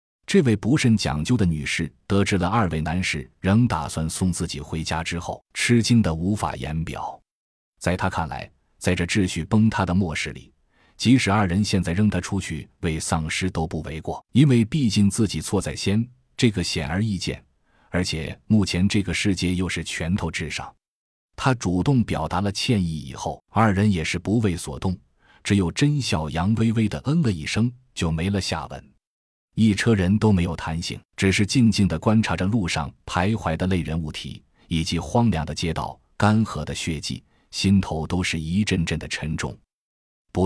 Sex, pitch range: male, 80-105 Hz